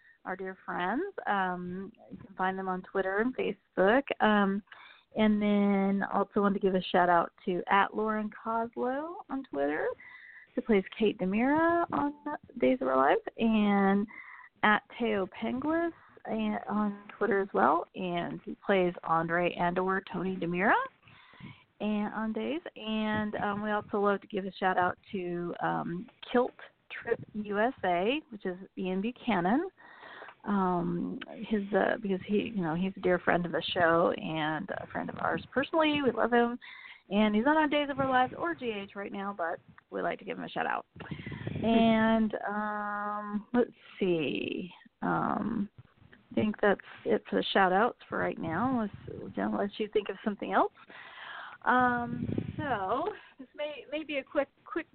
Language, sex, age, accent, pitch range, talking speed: English, female, 30-49, American, 190-250 Hz, 170 wpm